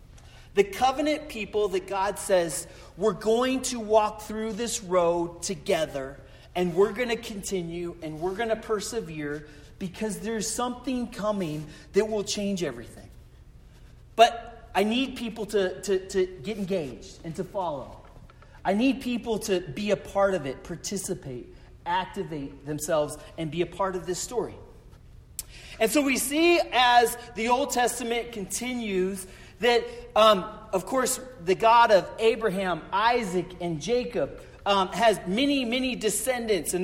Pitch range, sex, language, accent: 185-235 Hz, male, English, American